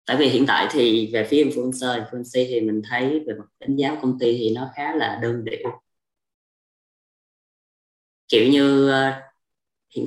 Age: 20-39